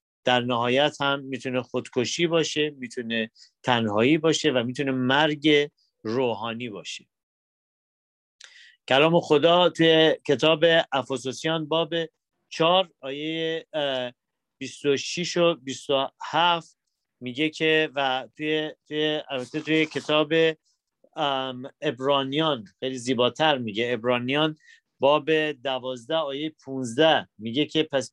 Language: Persian